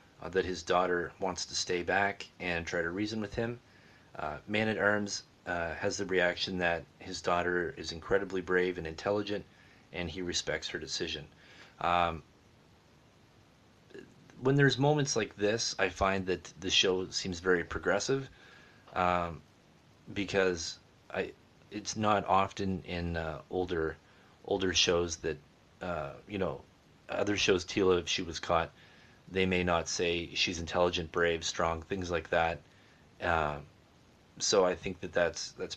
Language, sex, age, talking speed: English, male, 30-49, 150 wpm